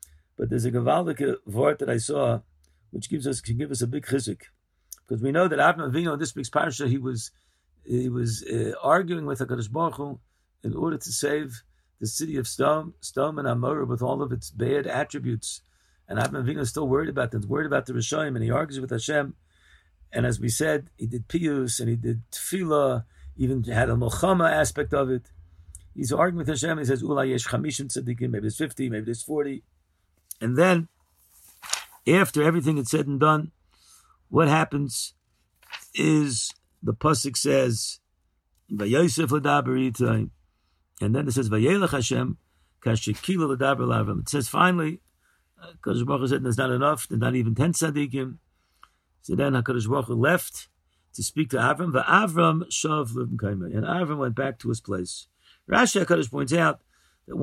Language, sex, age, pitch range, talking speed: English, male, 50-69, 110-150 Hz, 170 wpm